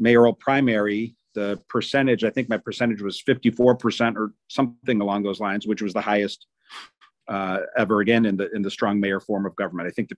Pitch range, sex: 105-130 Hz, male